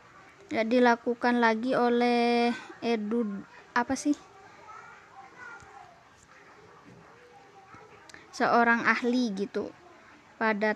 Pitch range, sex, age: 210-240 Hz, female, 20-39